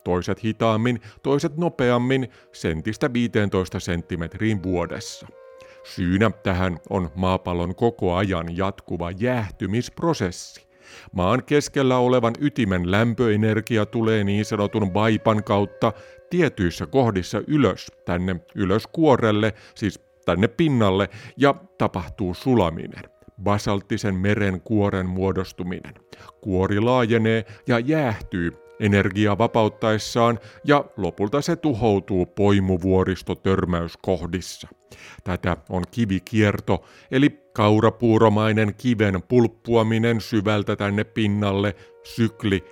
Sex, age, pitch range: male, 50-69, 95-120 Hz